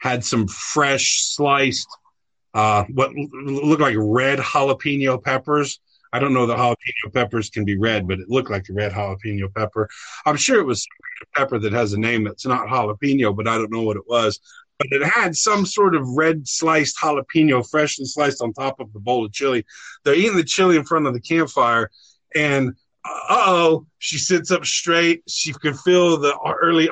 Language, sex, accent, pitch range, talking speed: English, male, American, 130-170 Hz, 195 wpm